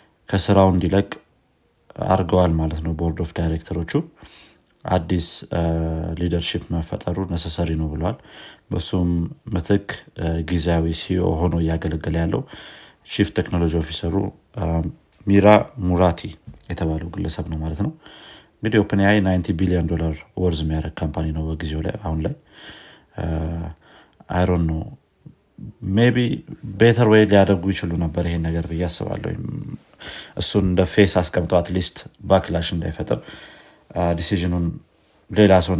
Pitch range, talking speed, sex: 80-100 Hz, 115 wpm, male